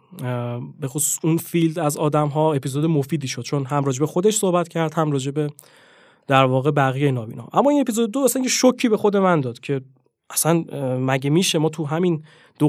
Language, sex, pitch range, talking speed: Persian, male, 145-180 Hz, 185 wpm